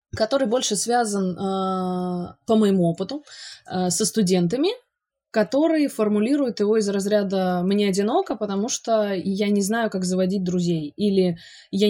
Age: 20-39